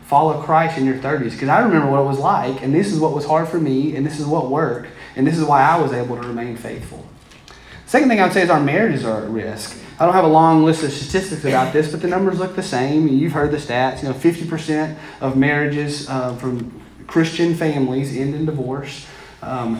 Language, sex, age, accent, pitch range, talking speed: English, male, 30-49, American, 130-170 Hz, 240 wpm